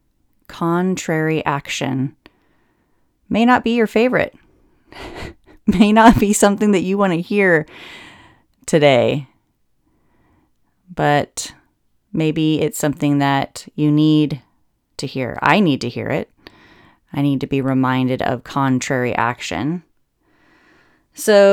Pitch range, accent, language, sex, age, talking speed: 145-180 Hz, American, English, female, 30-49, 110 wpm